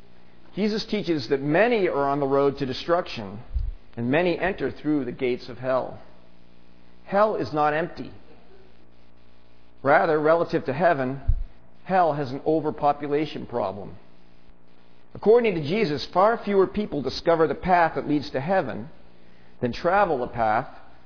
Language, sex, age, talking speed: English, male, 50-69, 135 wpm